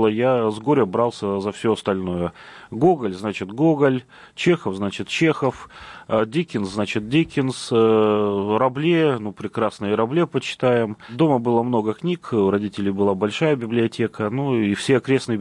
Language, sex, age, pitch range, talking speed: Russian, male, 30-49, 100-120 Hz, 130 wpm